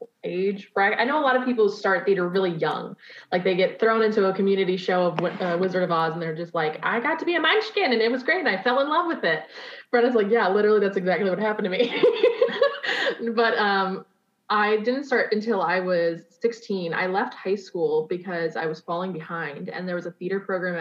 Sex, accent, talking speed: female, American, 230 wpm